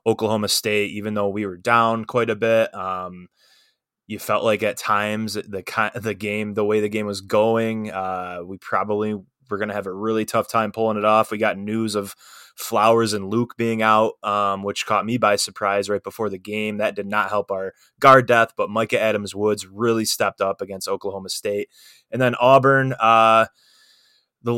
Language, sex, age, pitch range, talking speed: English, male, 20-39, 100-115 Hz, 200 wpm